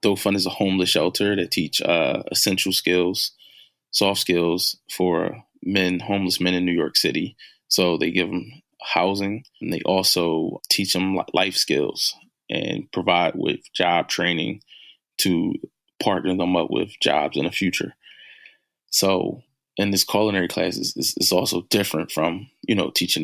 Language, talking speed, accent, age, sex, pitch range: English, 150 wpm, American, 20-39, male, 90-100 Hz